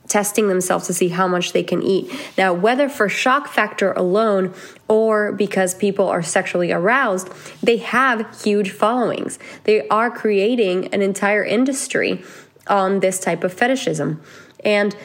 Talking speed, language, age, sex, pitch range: 150 wpm, English, 20-39, female, 175-205 Hz